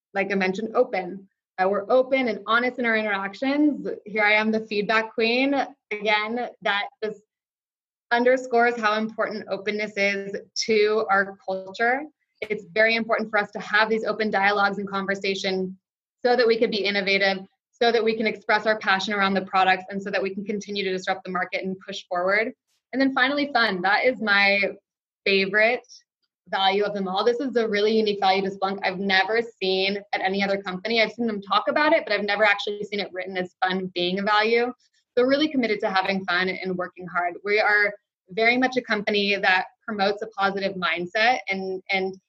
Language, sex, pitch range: English, female, 190-225 Hz